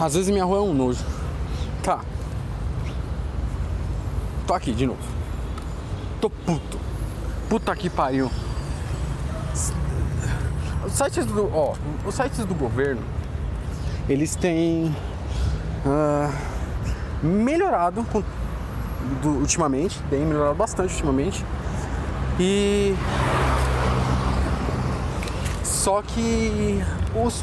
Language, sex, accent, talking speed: Portuguese, male, Brazilian, 80 wpm